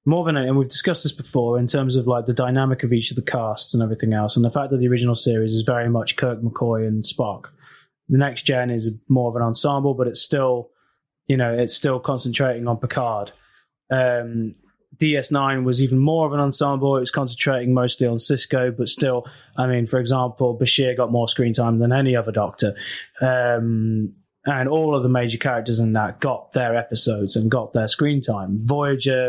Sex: male